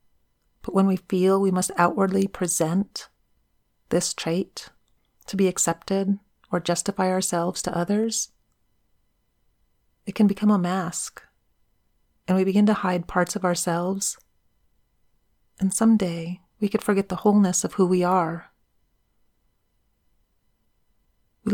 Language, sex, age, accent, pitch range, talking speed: English, female, 40-59, American, 170-200 Hz, 120 wpm